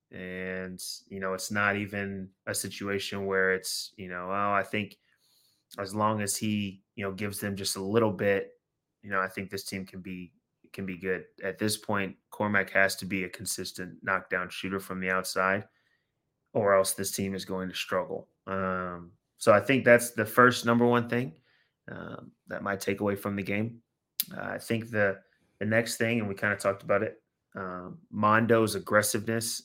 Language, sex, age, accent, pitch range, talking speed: English, male, 20-39, American, 95-105 Hz, 190 wpm